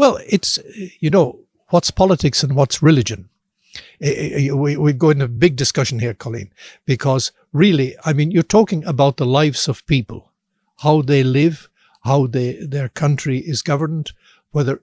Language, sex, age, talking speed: English, male, 60-79, 150 wpm